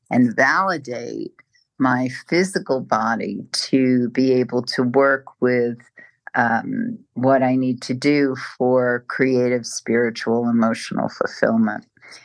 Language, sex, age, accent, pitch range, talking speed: English, female, 50-69, American, 120-135 Hz, 110 wpm